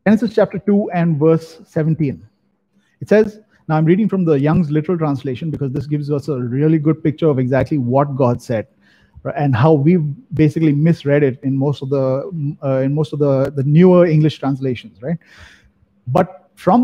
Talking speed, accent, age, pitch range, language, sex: 185 wpm, Indian, 30-49, 135-175 Hz, English, male